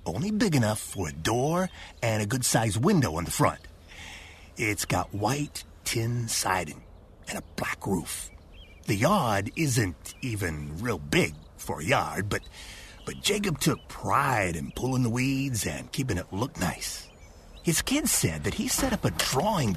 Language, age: English, 50-69